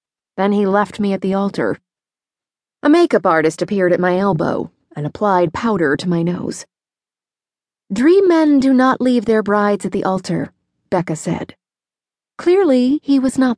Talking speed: 160 wpm